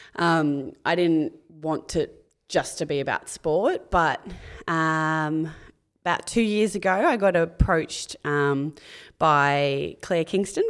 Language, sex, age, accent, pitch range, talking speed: English, female, 20-39, Australian, 150-185 Hz, 130 wpm